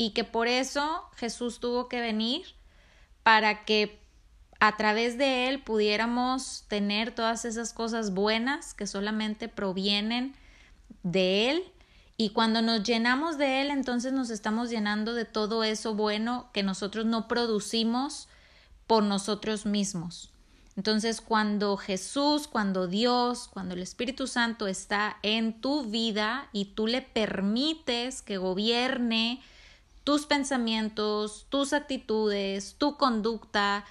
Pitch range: 210-250 Hz